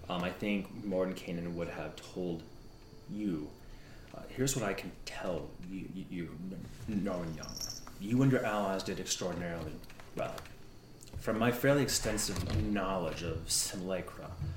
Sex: male